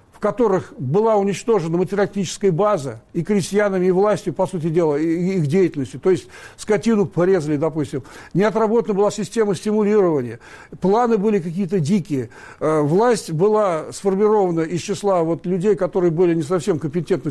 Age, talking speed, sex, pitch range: 60-79, 140 wpm, male, 160-205 Hz